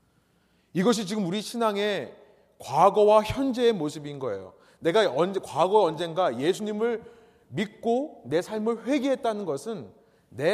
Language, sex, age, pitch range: Korean, male, 30-49, 160-235 Hz